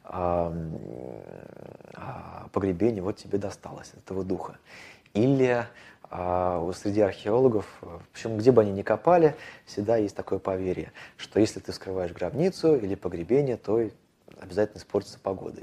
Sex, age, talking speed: male, 20-39, 125 wpm